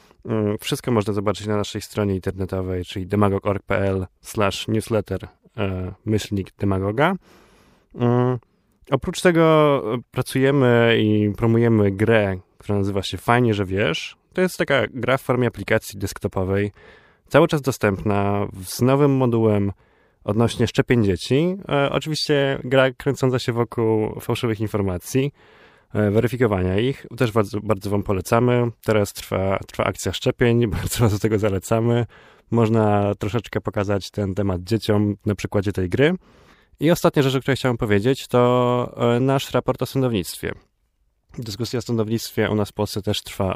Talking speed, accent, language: 130 wpm, native, Polish